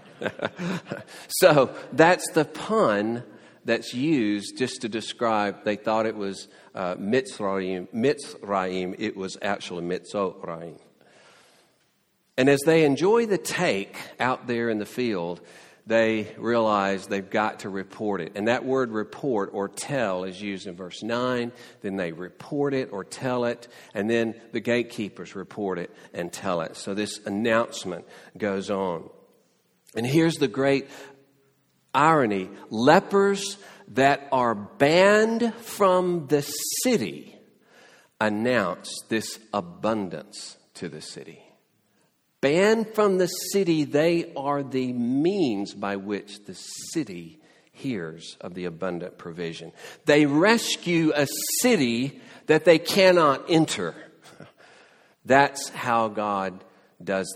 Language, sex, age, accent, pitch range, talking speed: English, male, 50-69, American, 100-150 Hz, 120 wpm